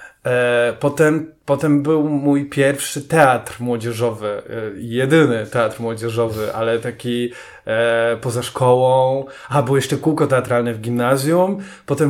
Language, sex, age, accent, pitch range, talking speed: Polish, male, 20-39, native, 125-150 Hz, 115 wpm